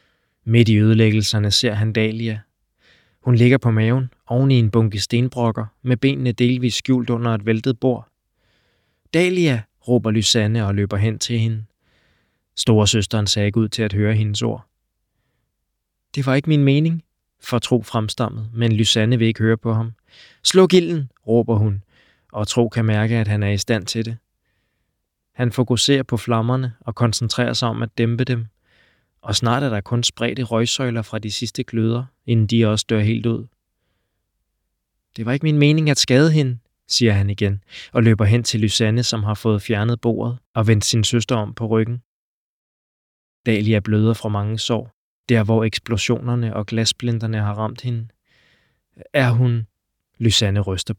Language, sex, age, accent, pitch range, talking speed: Danish, male, 20-39, native, 105-120 Hz, 170 wpm